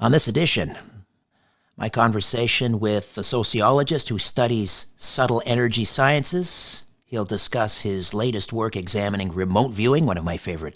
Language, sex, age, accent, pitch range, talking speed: English, male, 50-69, American, 95-125 Hz, 140 wpm